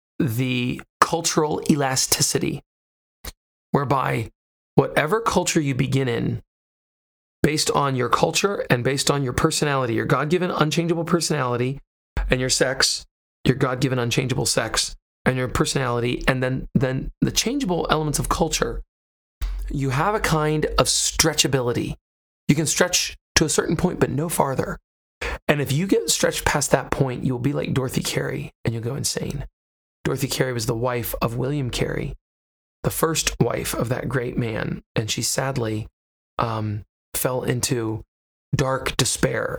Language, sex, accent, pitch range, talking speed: English, male, American, 95-145 Hz, 145 wpm